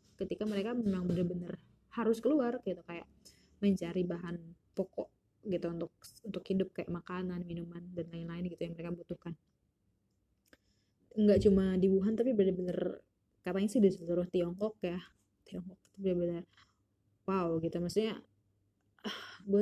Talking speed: 130 wpm